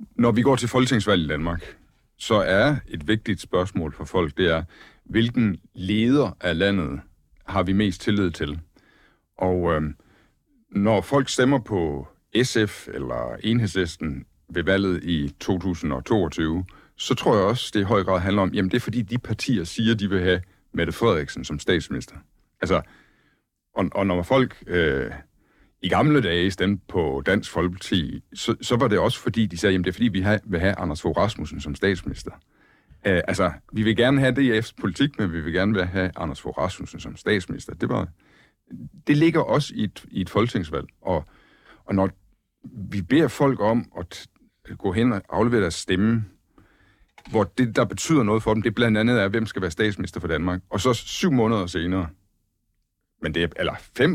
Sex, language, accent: male, Danish, native